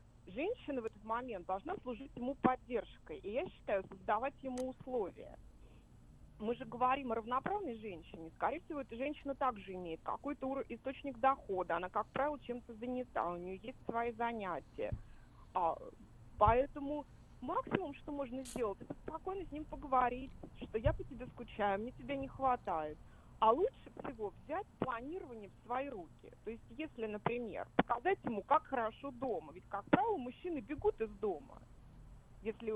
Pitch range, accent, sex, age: 220-295 Hz, native, female, 30-49